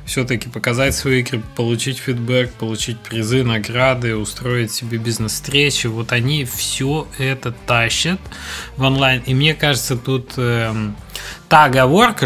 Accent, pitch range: native, 115-140 Hz